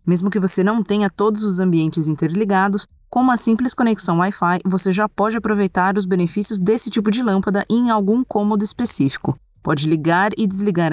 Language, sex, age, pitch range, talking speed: Portuguese, female, 20-39, 175-215 Hz, 175 wpm